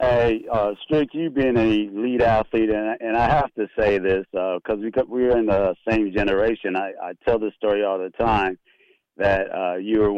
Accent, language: American, English